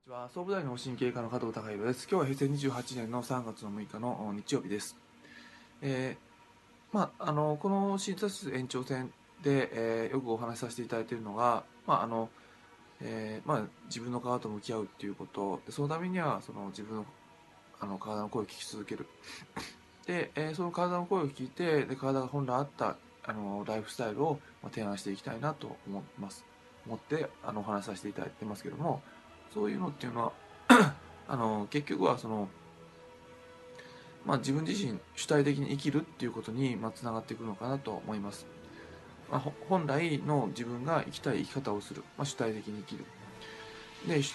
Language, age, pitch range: Japanese, 20-39, 110-145 Hz